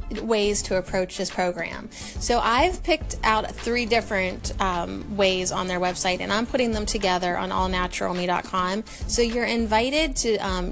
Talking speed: 155 wpm